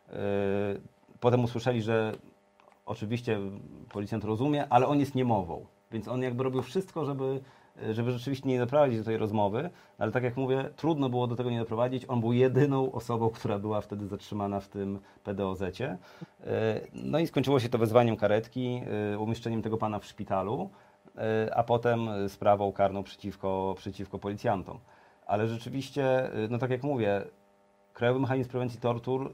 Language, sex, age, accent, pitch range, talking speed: Polish, male, 40-59, native, 100-125 Hz, 150 wpm